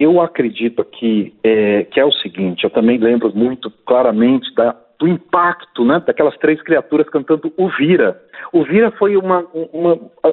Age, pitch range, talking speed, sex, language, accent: 50-69, 125-190 Hz, 155 wpm, male, Portuguese, Brazilian